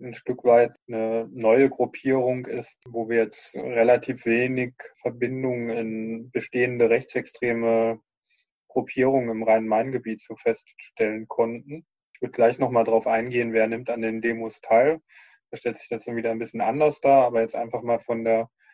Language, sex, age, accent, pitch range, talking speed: German, male, 20-39, German, 115-125 Hz, 160 wpm